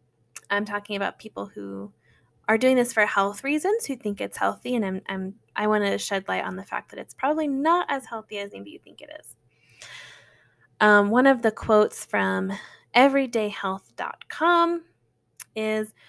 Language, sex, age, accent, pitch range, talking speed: English, female, 10-29, American, 195-250 Hz, 170 wpm